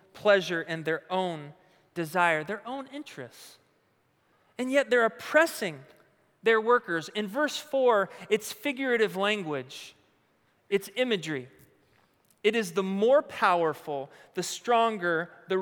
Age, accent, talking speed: 40-59, American, 115 wpm